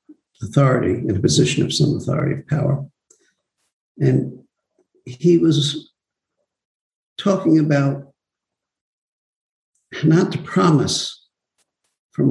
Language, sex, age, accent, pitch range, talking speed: English, male, 60-79, American, 140-175 Hz, 90 wpm